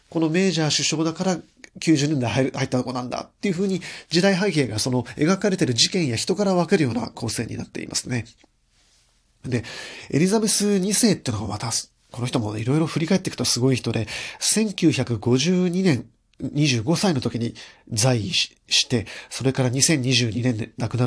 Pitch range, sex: 125-185 Hz, male